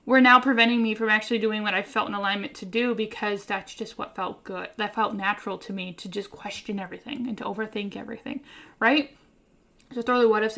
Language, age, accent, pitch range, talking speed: English, 10-29, American, 220-270 Hz, 215 wpm